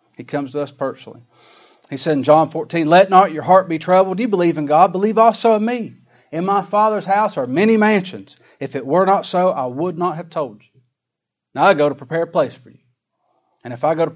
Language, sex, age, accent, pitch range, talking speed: English, male, 40-59, American, 135-185 Hz, 235 wpm